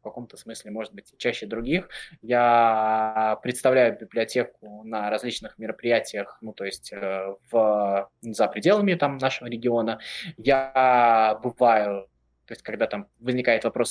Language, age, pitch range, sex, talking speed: Russian, 20-39, 110-135 Hz, male, 125 wpm